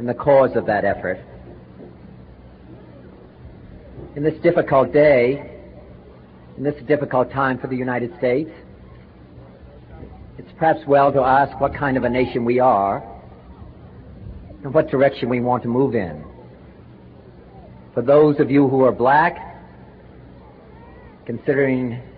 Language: English